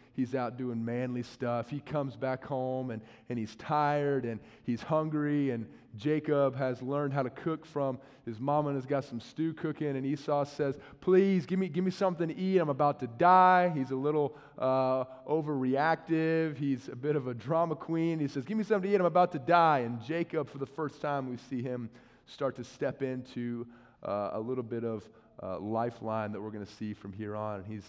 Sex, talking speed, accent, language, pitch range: male, 215 wpm, American, English, 125-155 Hz